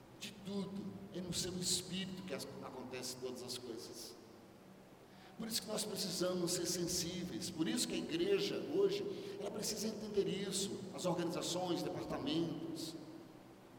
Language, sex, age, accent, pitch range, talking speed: Portuguese, male, 60-79, Brazilian, 160-250 Hz, 130 wpm